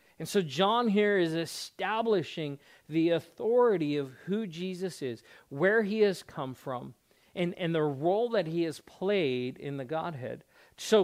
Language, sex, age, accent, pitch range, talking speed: English, male, 50-69, American, 135-170 Hz, 160 wpm